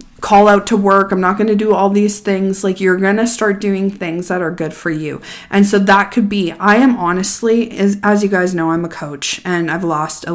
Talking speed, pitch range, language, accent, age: 255 wpm, 170-210 Hz, English, American, 20-39